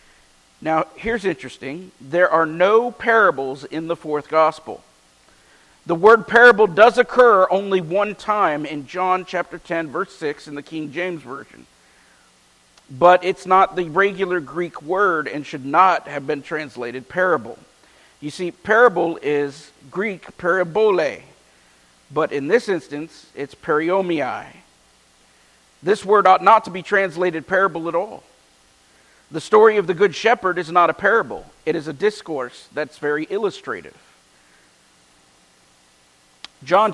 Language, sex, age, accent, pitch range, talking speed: English, male, 50-69, American, 120-200 Hz, 135 wpm